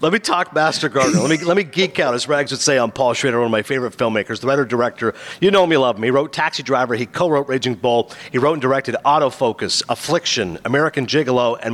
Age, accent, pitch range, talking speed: 50-69, American, 125-175 Hz, 255 wpm